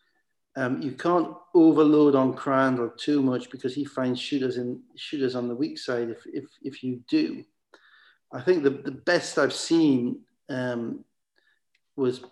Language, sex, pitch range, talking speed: English, male, 130-150 Hz, 155 wpm